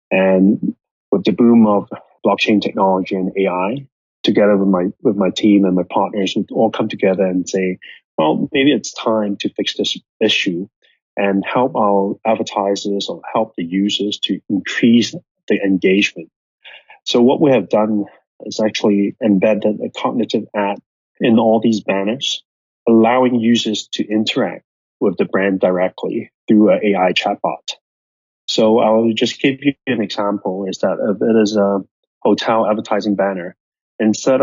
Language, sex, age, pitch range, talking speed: English, male, 30-49, 95-110 Hz, 155 wpm